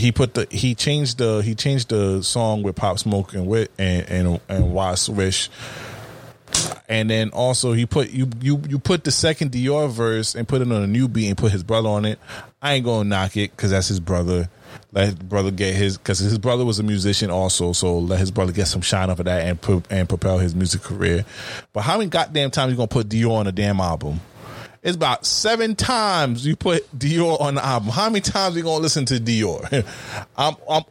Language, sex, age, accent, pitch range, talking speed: English, male, 20-39, American, 100-145 Hz, 230 wpm